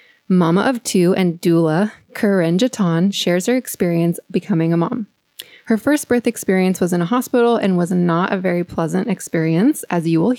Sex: female